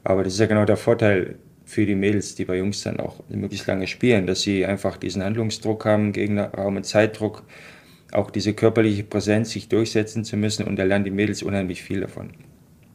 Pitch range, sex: 100-115 Hz, male